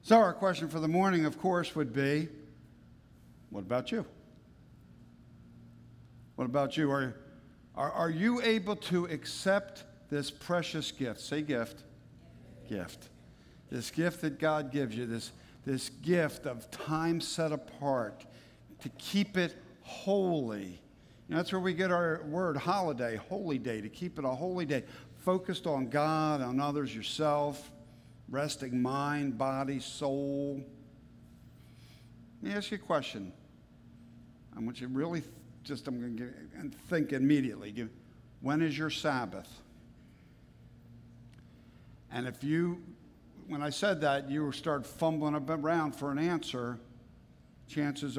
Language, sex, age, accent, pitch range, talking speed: English, male, 60-79, American, 120-160 Hz, 135 wpm